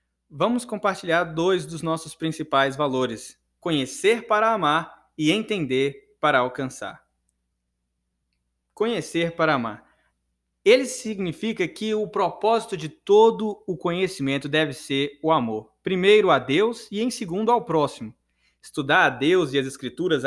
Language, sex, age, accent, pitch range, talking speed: Portuguese, male, 20-39, Brazilian, 135-215 Hz, 130 wpm